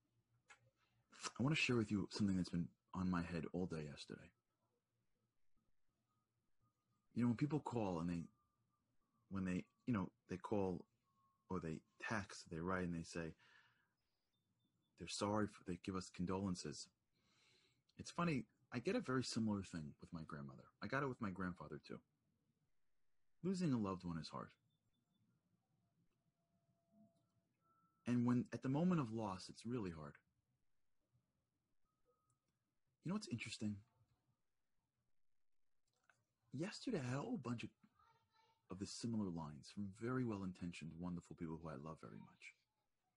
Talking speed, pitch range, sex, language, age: 140 wpm, 90-125 Hz, male, English, 30-49